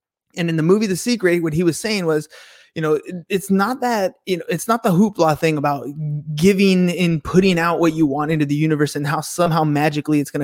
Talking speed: 230 wpm